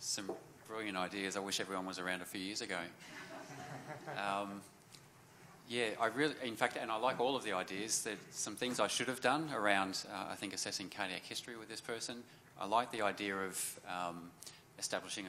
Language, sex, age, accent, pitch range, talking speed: English, male, 30-49, Australian, 95-120 Hz, 190 wpm